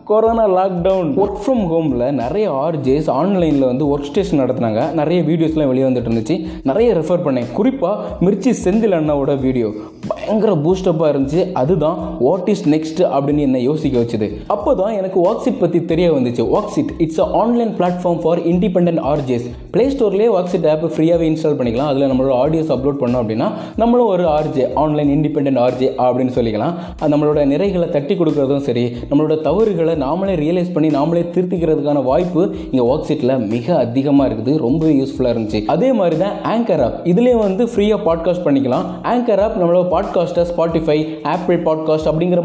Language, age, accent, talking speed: Tamil, 20-39, native, 50 wpm